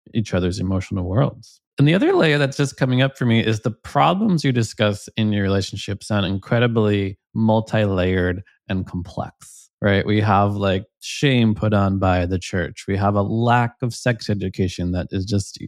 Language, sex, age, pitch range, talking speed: English, male, 20-39, 95-115 Hz, 180 wpm